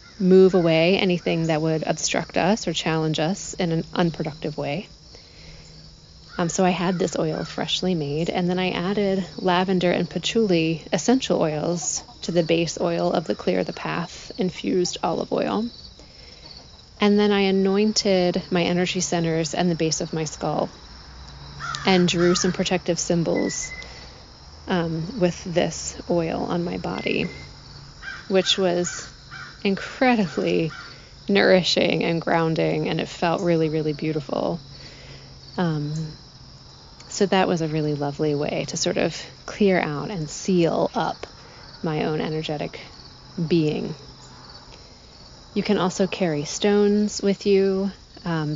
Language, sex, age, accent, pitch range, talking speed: English, female, 30-49, American, 160-190 Hz, 135 wpm